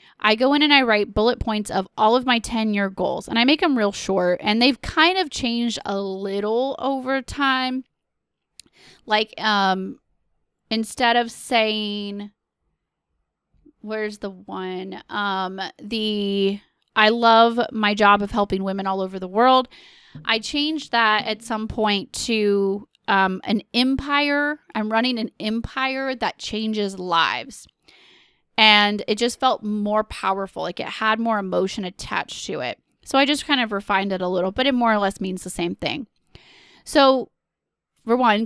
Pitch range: 200-245 Hz